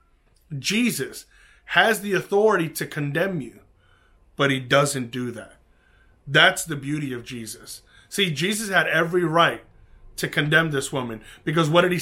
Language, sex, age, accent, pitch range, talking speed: English, male, 30-49, American, 140-185 Hz, 150 wpm